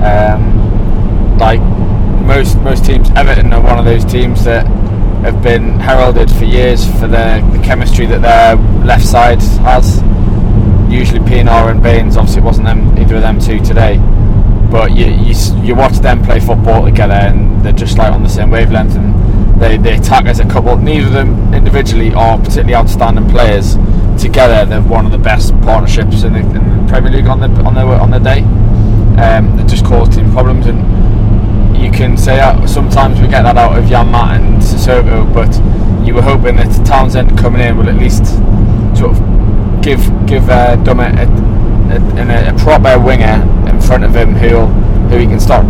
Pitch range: 100-110 Hz